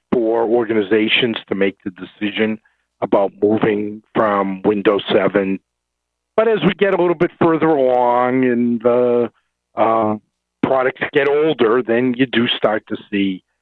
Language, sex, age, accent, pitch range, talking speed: English, male, 50-69, American, 95-125 Hz, 135 wpm